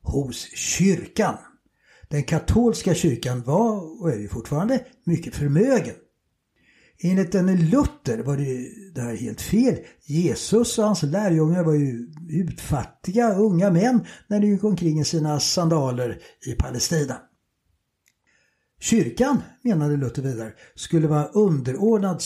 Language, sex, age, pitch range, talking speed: English, male, 60-79, 130-190 Hz, 120 wpm